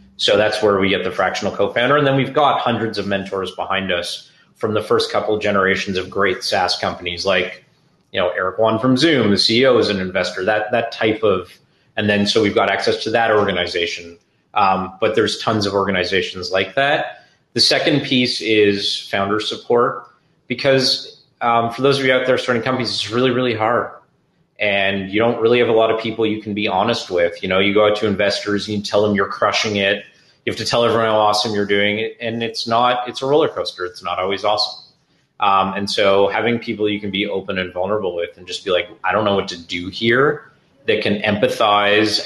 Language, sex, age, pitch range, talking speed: English, male, 30-49, 100-120 Hz, 215 wpm